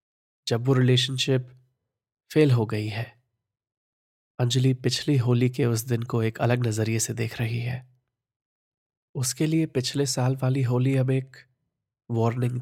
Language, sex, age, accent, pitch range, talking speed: Hindi, male, 20-39, native, 115-130 Hz, 145 wpm